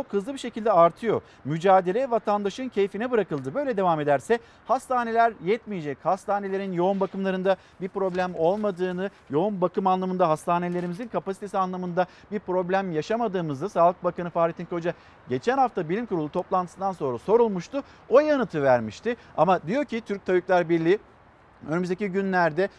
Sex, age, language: male, 50-69, Turkish